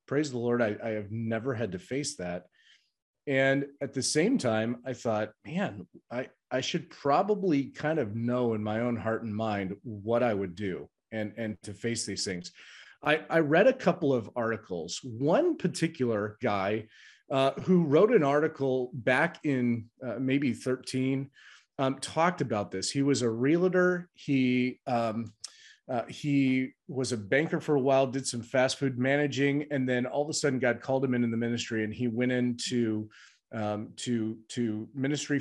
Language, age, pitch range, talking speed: English, 30-49, 115-145 Hz, 180 wpm